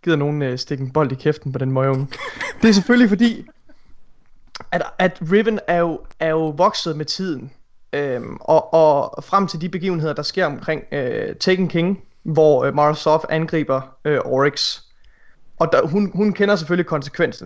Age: 20-39